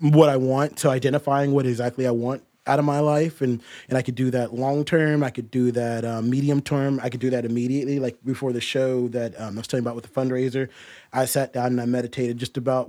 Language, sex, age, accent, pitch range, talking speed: English, male, 20-39, American, 125-155 Hz, 255 wpm